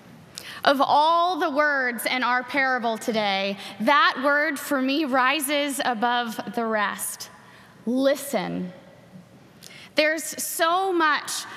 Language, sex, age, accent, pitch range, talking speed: English, female, 20-39, American, 255-310 Hz, 105 wpm